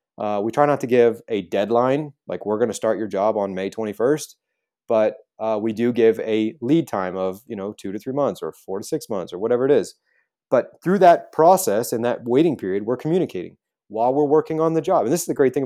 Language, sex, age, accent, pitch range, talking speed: English, male, 30-49, American, 115-160 Hz, 245 wpm